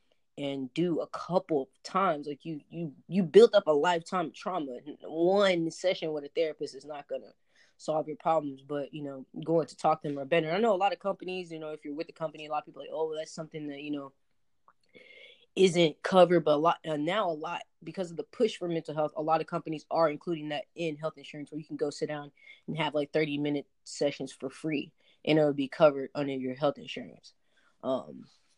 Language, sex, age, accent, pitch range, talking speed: English, female, 20-39, American, 145-175 Hz, 235 wpm